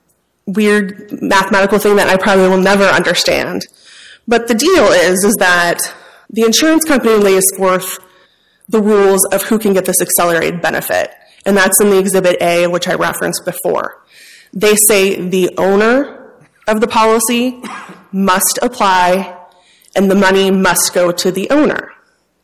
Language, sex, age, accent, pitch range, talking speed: English, female, 20-39, American, 190-240 Hz, 150 wpm